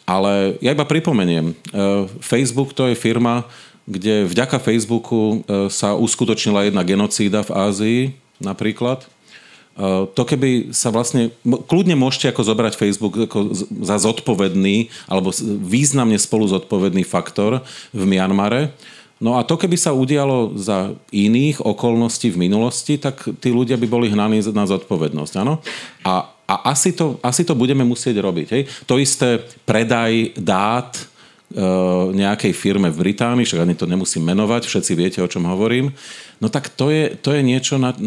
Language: Slovak